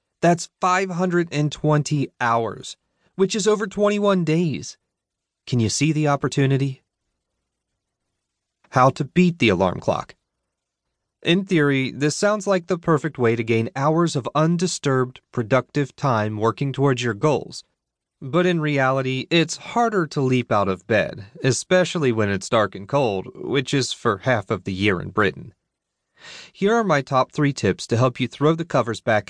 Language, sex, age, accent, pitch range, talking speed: English, male, 30-49, American, 115-160 Hz, 155 wpm